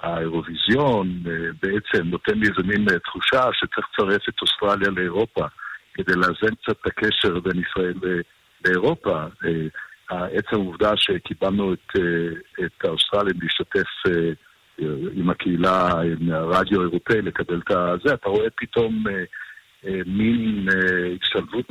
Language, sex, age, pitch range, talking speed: Hebrew, male, 50-69, 85-100 Hz, 110 wpm